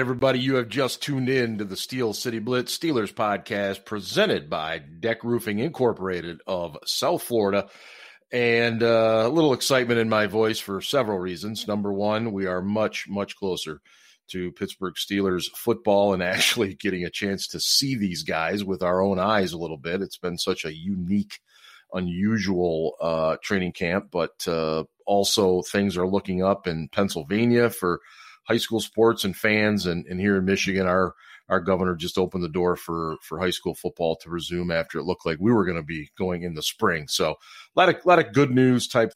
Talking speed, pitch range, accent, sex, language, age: 190 wpm, 90-115 Hz, American, male, English, 40-59